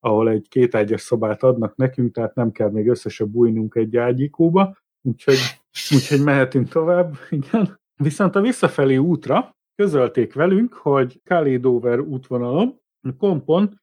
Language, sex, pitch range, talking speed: Hungarian, male, 130-170 Hz, 125 wpm